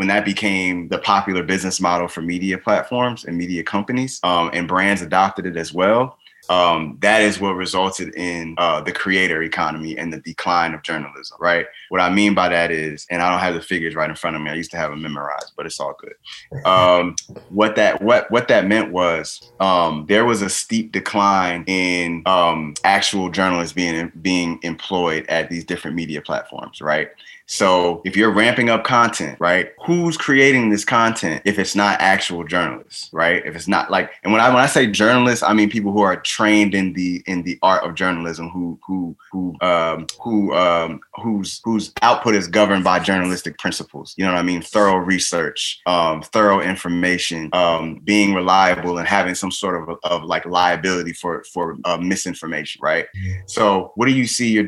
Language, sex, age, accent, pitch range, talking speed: English, male, 20-39, American, 85-100 Hz, 195 wpm